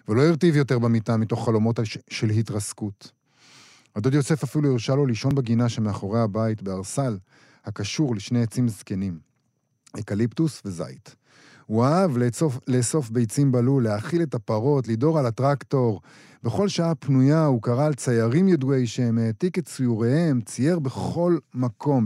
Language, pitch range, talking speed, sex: Hebrew, 110-140 Hz, 140 wpm, male